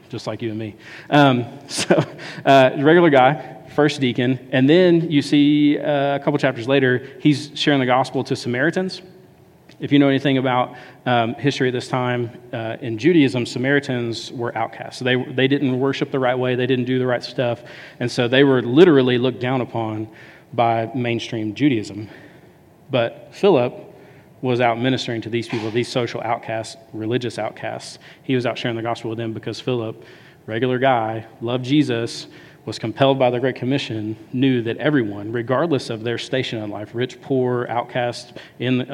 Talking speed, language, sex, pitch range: 175 wpm, English, male, 115-135 Hz